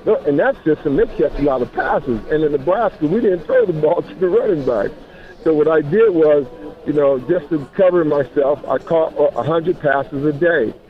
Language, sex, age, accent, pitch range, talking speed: English, male, 50-69, American, 135-165 Hz, 210 wpm